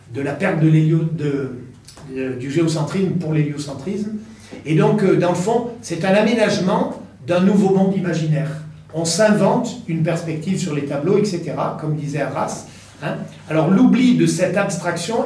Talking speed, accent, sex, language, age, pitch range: 155 wpm, French, male, French, 40-59, 155-195 Hz